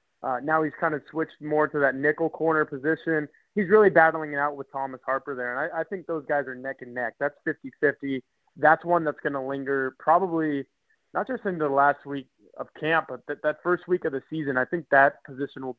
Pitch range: 135-160 Hz